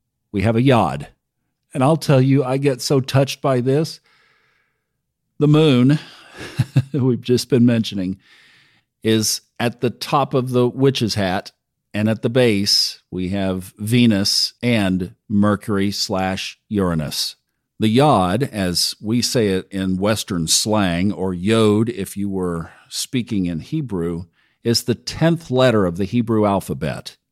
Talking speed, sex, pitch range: 140 wpm, male, 100-125 Hz